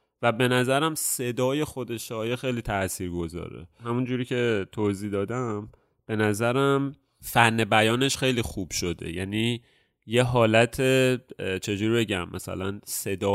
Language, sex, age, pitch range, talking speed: Persian, male, 30-49, 100-120 Hz, 125 wpm